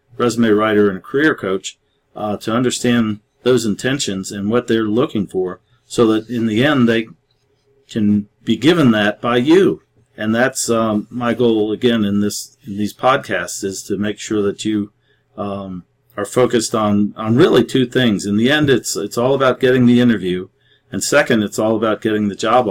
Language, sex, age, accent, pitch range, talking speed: English, male, 50-69, American, 105-125 Hz, 190 wpm